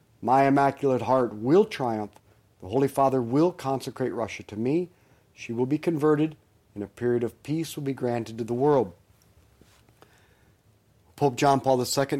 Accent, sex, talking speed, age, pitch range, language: American, male, 155 wpm, 40-59, 105-135 Hz, English